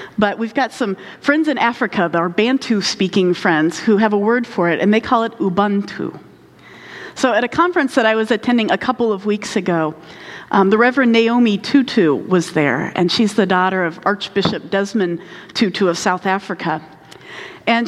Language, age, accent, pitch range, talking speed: English, 40-59, American, 185-240 Hz, 180 wpm